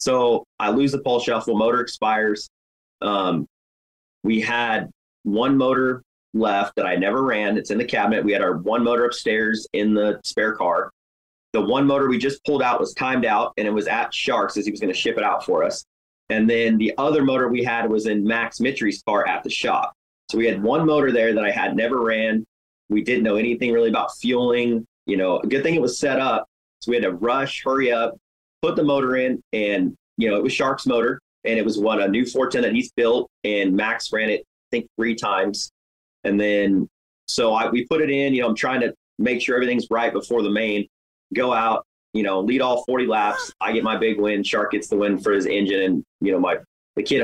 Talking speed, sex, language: 230 wpm, male, English